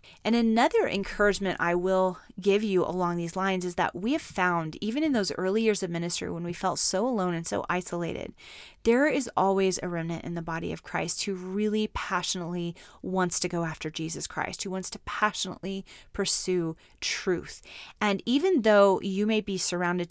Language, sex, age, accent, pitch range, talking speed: English, female, 30-49, American, 175-210 Hz, 185 wpm